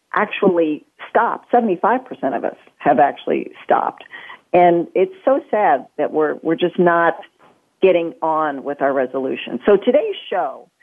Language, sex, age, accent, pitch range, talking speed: English, female, 40-59, American, 160-240 Hz, 140 wpm